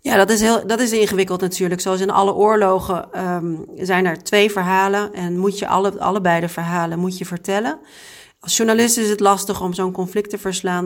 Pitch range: 185-215 Hz